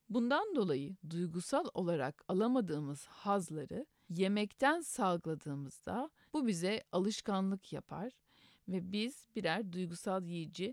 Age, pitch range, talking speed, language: 50-69, 175-230 Hz, 95 wpm, Turkish